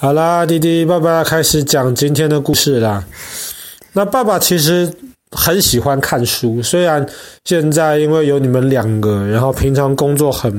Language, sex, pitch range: Chinese, male, 125-160 Hz